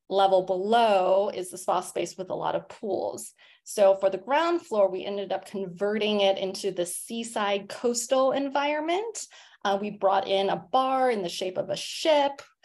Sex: female